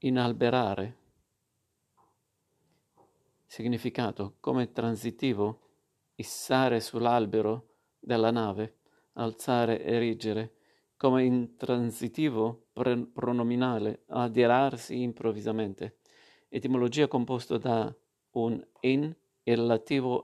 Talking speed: 65 wpm